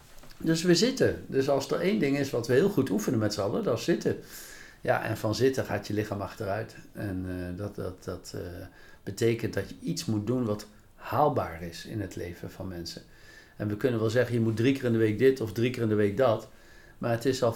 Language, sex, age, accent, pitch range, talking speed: Dutch, male, 60-79, Dutch, 105-145 Hz, 245 wpm